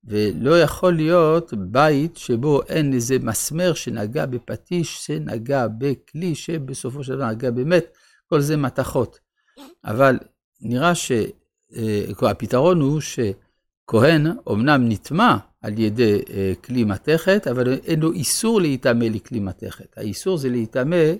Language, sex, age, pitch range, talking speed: Hebrew, male, 50-69, 115-170 Hz, 115 wpm